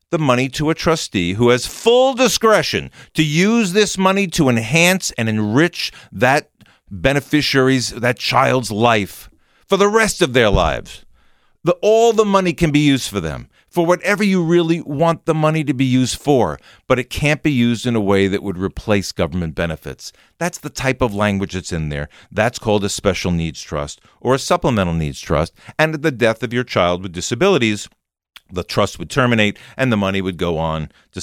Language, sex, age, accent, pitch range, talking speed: English, male, 50-69, American, 100-150 Hz, 190 wpm